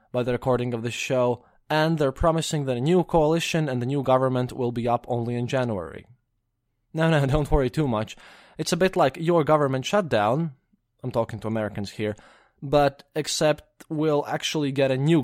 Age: 20-39